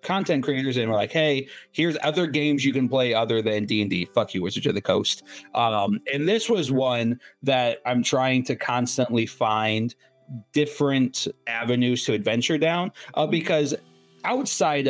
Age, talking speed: 30-49, 170 wpm